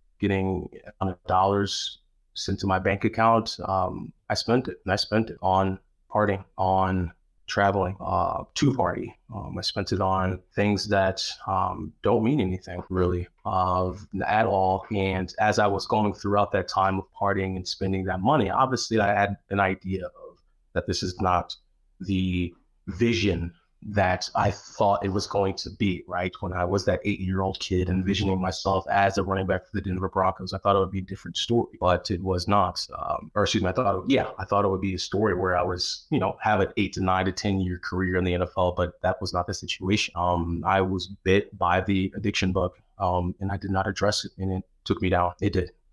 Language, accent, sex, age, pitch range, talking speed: English, American, male, 30-49, 90-100 Hz, 210 wpm